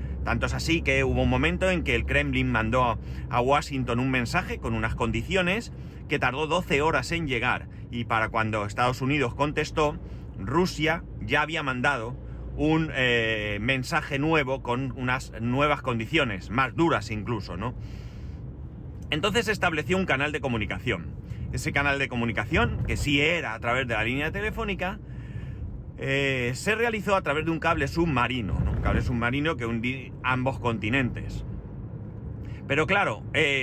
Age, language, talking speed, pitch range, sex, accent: 30-49, Spanish, 155 wpm, 115-150 Hz, male, Spanish